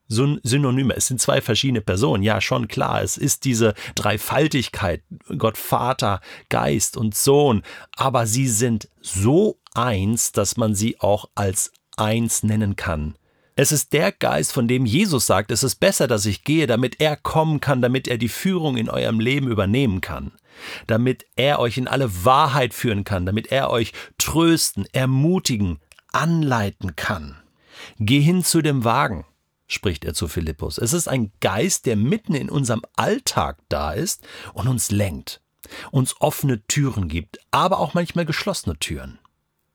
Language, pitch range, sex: German, 100-135 Hz, male